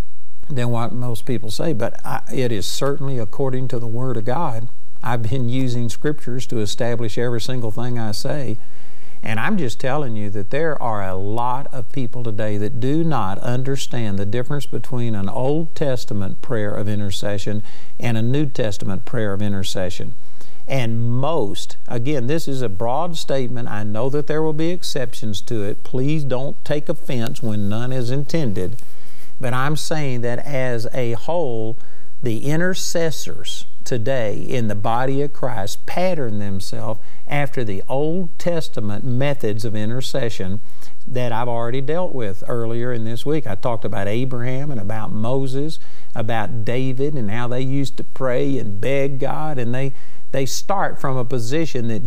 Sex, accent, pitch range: male, American, 110-135 Hz